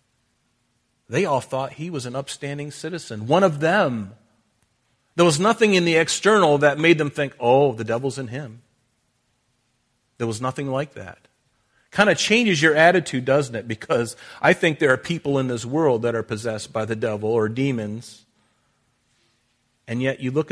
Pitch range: 115-150 Hz